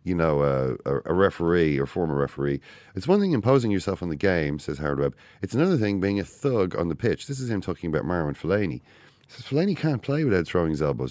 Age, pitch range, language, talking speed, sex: 30-49, 75-100 Hz, English, 240 wpm, male